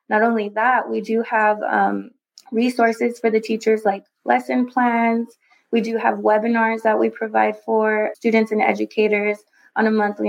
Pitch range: 190-225 Hz